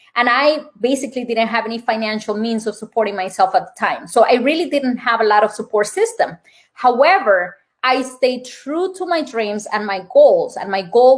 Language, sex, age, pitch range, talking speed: English, female, 20-39, 215-285 Hz, 200 wpm